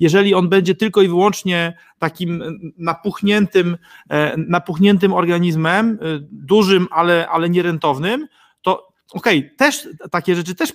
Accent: native